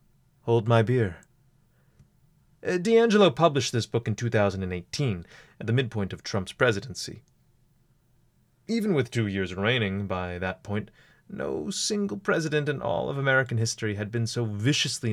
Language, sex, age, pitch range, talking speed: English, male, 30-49, 110-155 Hz, 140 wpm